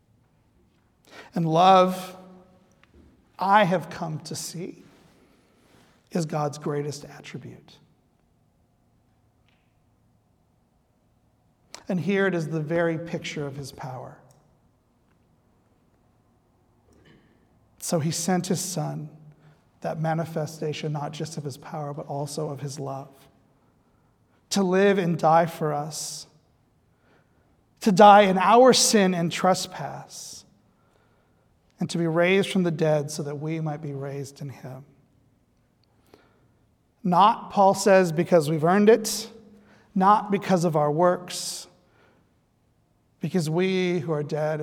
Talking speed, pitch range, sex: 110 wpm, 145-180 Hz, male